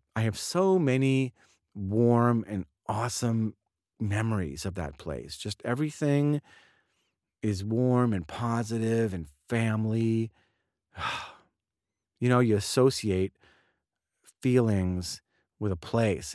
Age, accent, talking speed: 40-59, American, 100 wpm